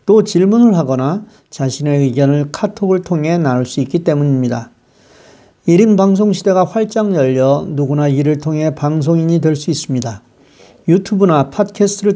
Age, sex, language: 40-59, male, Korean